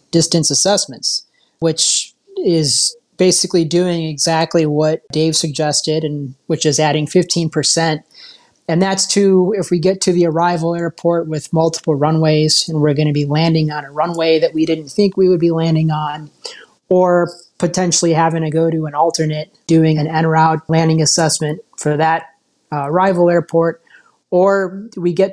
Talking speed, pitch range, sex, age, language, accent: 160 wpm, 155-175 Hz, male, 30-49, English, American